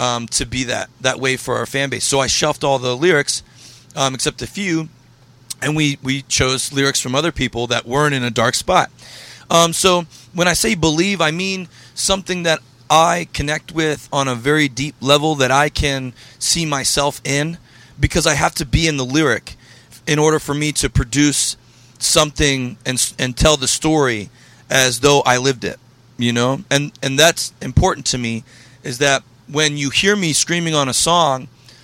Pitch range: 125-150 Hz